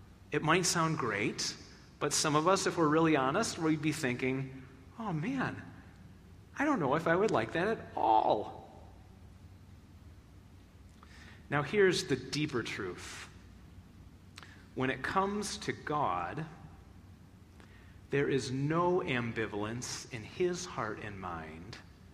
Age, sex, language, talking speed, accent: 30-49, male, English, 125 wpm, American